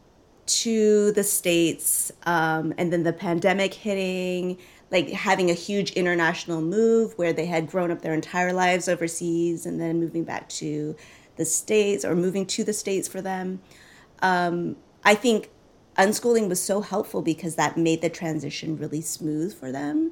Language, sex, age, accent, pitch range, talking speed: English, female, 30-49, American, 165-220 Hz, 160 wpm